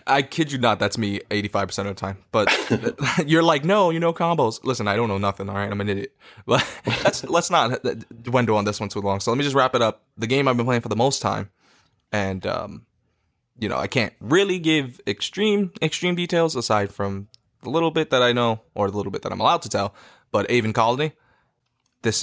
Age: 20-39